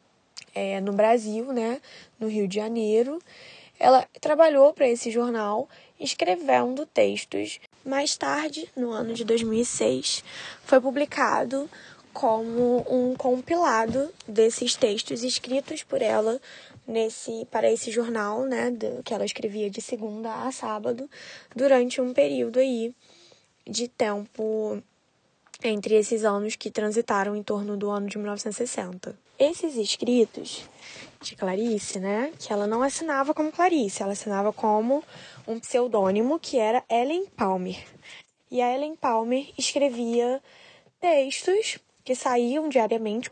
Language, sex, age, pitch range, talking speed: Portuguese, female, 10-29, 215-275 Hz, 120 wpm